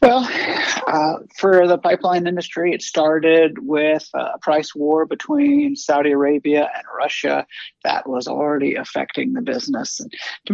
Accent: American